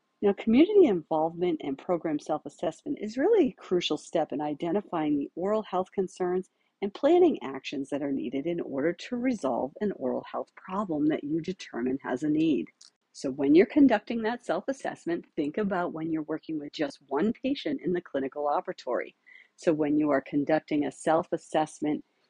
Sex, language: female, English